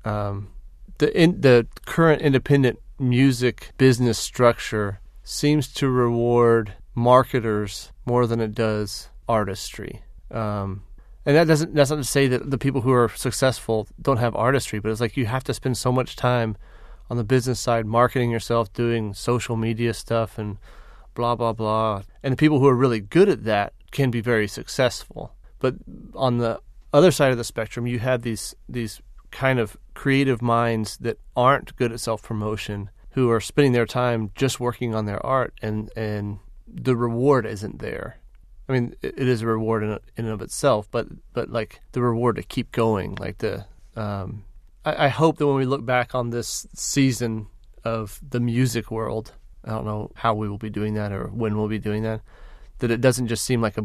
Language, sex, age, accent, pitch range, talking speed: English, male, 30-49, American, 110-130 Hz, 190 wpm